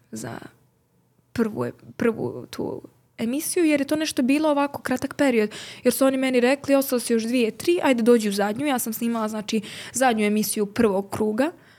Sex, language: female, Croatian